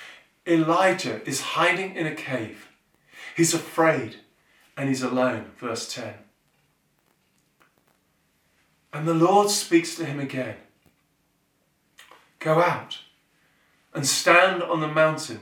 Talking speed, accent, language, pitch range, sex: 105 wpm, British, English, 145-180 Hz, male